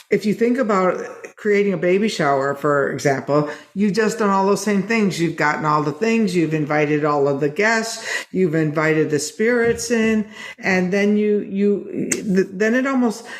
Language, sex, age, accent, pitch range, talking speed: English, female, 50-69, American, 170-220 Hz, 180 wpm